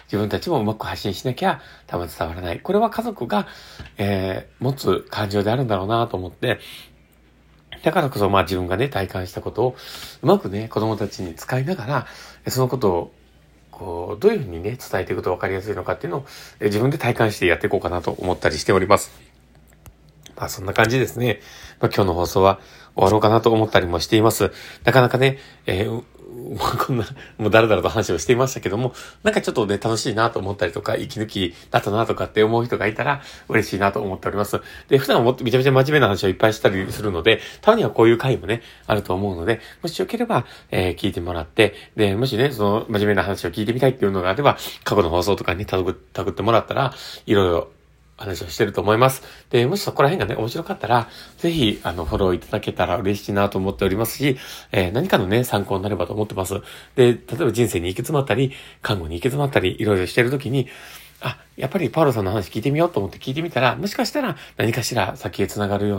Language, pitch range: Japanese, 95-130 Hz